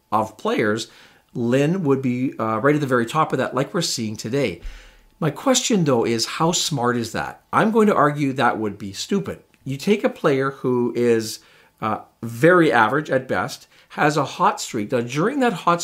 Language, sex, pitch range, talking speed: English, male, 120-165 Hz, 195 wpm